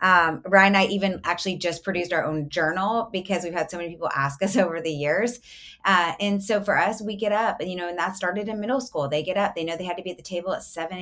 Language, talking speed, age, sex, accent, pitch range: English, 290 wpm, 30-49, female, American, 155-195 Hz